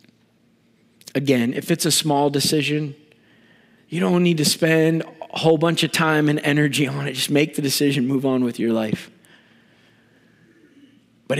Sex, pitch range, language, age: male, 135-195 Hz, English, 40-59